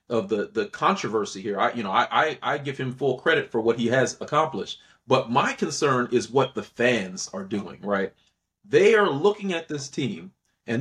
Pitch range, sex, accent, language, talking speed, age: 130-205 Hz, male, American, English, 205 wpm, 40-59